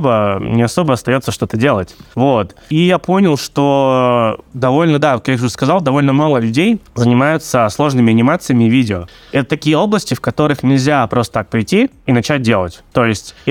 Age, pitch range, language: 20-39, 115-145 Hz, Russian